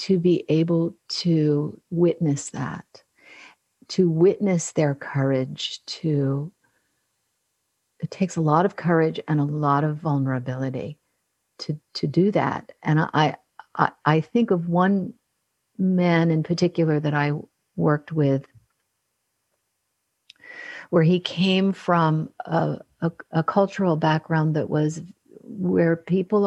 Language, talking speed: English, 120 wpm